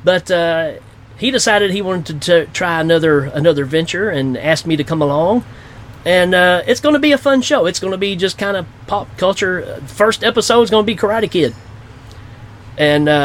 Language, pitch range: English, 120-185 Hz